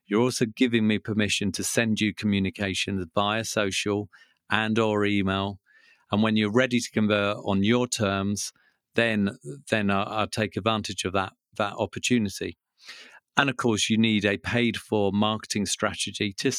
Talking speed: 155 wpm